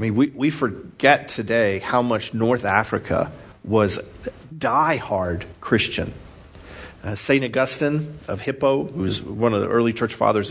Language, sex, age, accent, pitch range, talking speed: English, male, 50-69, American, 100-130 Hz, 150 wpm